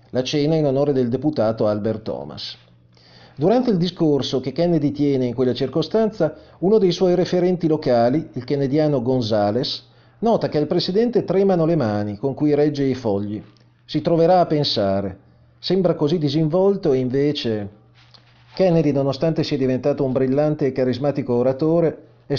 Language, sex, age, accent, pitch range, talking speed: Italian, male, 40-59, native, 120-160 Hz, 150 wpm